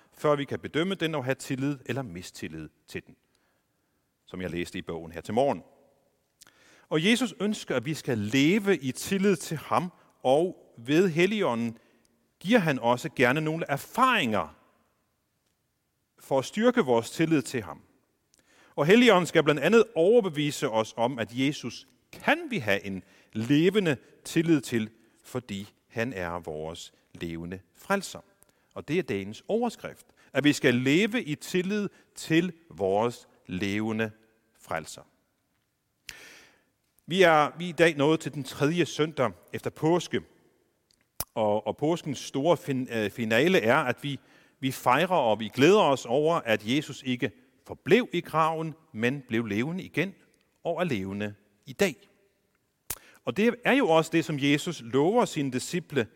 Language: Danish